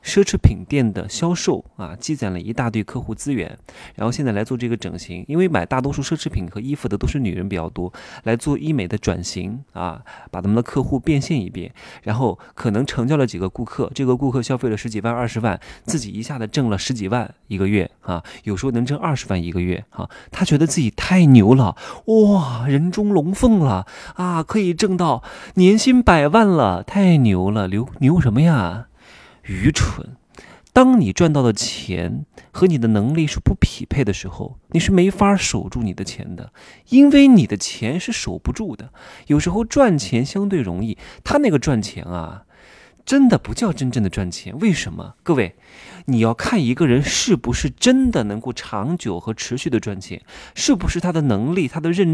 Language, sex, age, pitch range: Chinese, male, 30-49, 105-165 Hz